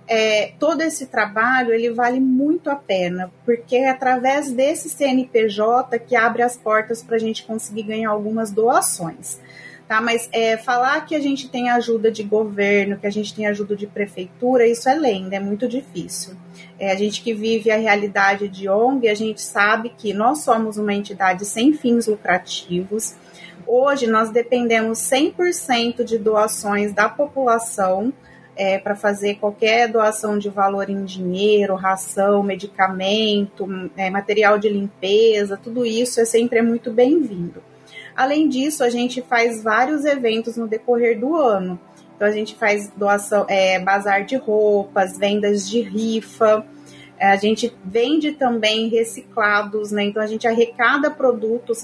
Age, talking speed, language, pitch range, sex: 30-49, 145 wpm, Portuguese, 205-240 Hz, female